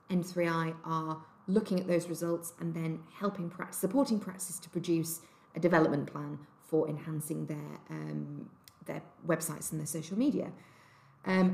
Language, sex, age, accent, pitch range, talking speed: English, female, 40-59, British, 155-180 Hz, 145 wpm